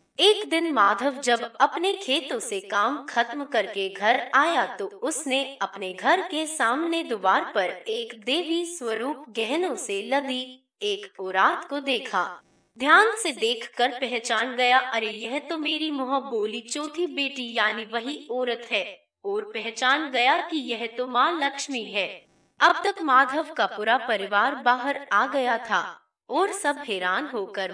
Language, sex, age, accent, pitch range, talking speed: Hindi, female, 20-39, native, 230-335 Hz, 150 wpm